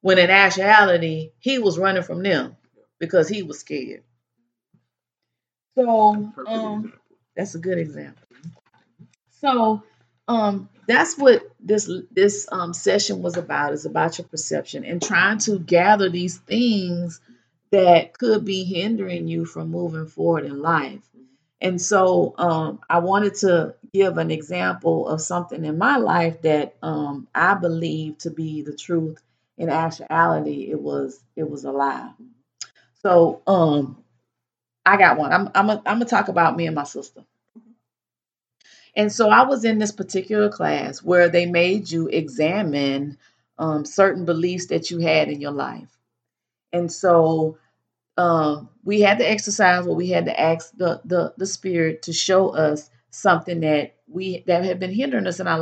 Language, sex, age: English, female, 30-49